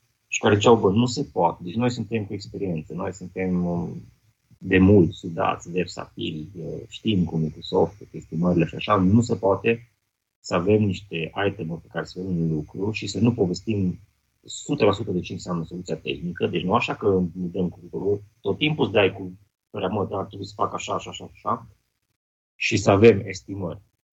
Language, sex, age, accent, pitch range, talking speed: Romanian, male, 30-49, native, 90-115 Hz, 190 wpm